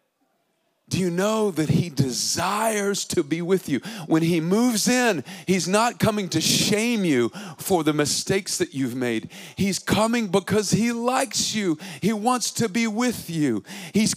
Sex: male